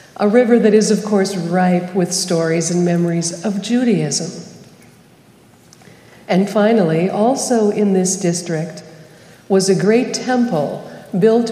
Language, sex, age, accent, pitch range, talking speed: English, female, 50-69, American, 175-215 Hz, 125 wpm